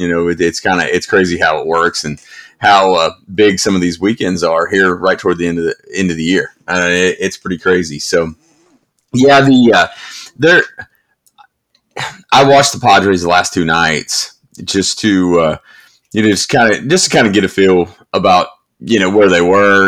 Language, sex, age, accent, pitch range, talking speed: English, male, 30-49, American, 85-105 Hz, 210 wpm